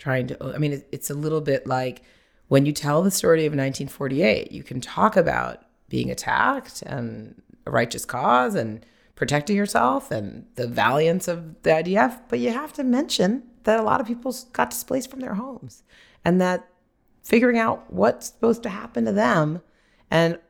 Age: 30-49